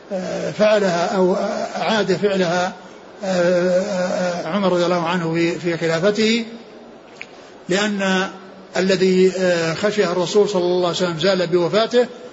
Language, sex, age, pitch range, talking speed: Arabic, male, 60-79, 175-195 Hz, 90 wpm